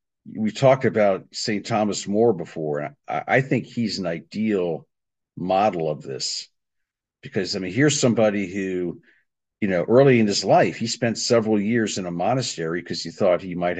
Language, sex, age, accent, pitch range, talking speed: English, male, 50-69, American, 90-115 Hz, 180 wpm